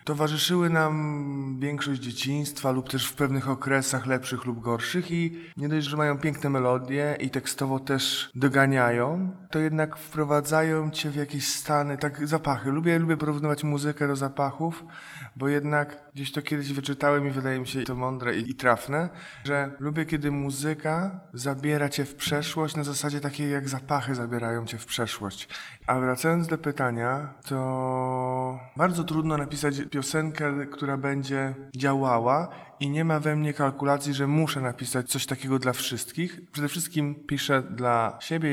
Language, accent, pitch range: Polish, native, 135-160 Hz